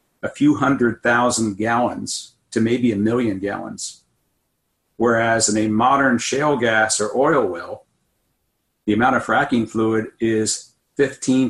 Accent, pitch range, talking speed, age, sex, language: American, 110-120 Hz, 135 wpm, 50-69, male, English